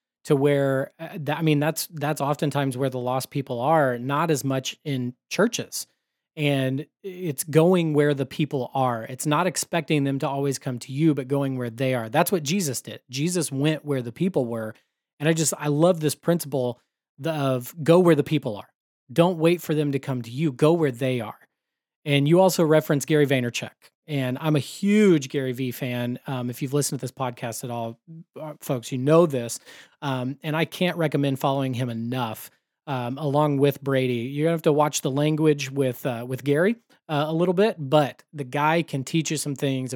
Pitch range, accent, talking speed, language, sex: 130-160 Hz, American, 200 wpm, English, male